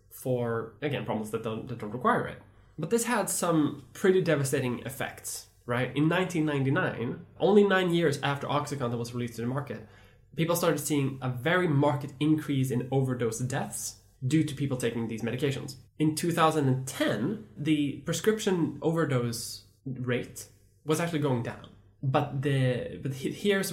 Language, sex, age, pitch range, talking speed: English, male, 10-29, 120-150 Hz, 145 wpm